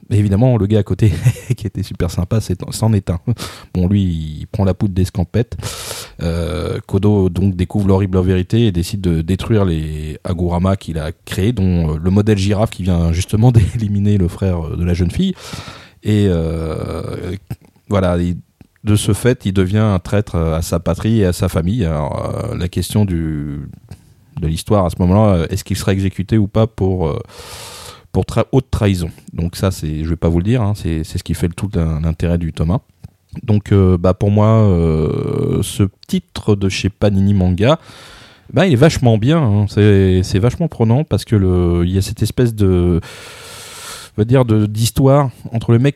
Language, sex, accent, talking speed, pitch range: French, male, French, 190 wpm, 90-110 Hz